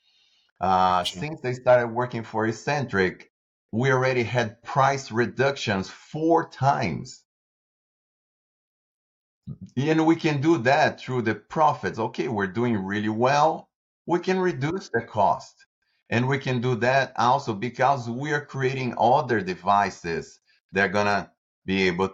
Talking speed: 135 wpm